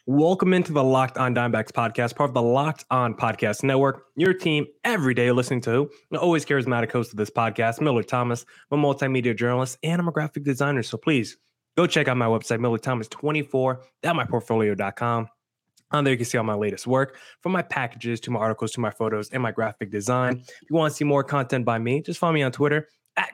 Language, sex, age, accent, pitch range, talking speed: English, male, 20-39, American, 120-155 Hz, 220 wpm